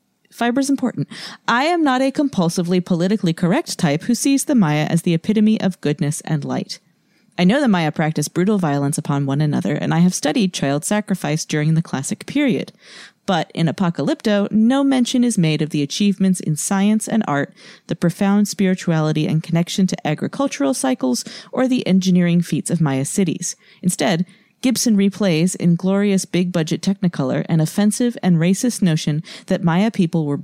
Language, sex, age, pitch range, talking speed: English, female, 30-49, 160-215 Hz, 170 wpm